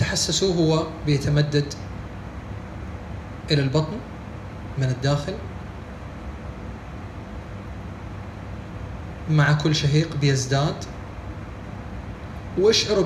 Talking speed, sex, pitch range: 55 wpm, male, 100-145 Hz